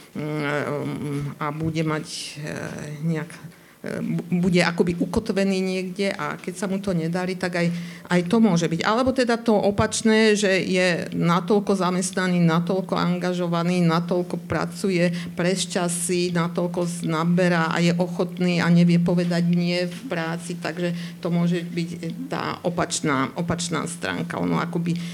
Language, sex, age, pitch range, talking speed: Slovak, female, 50-69, 170-195 Hz, 130 wpm